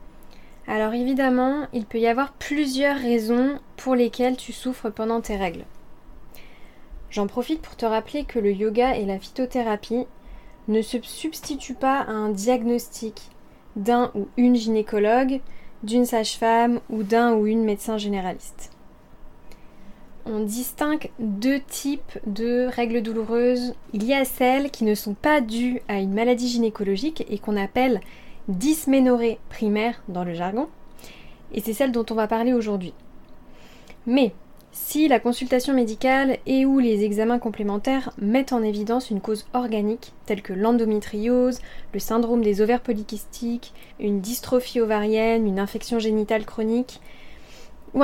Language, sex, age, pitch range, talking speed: French, female, 10-29, 215-250 Hz, 140 wpm